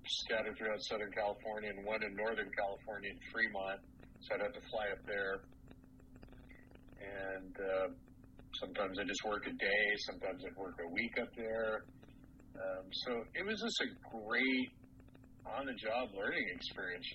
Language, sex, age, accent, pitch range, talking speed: English, male, 40-59, American, 105-125 Hz, 160 wpm